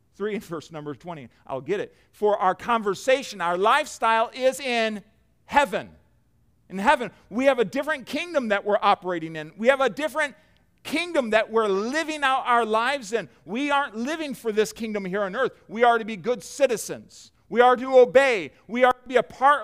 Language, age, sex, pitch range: English, 50-69, male, 155-230 Hz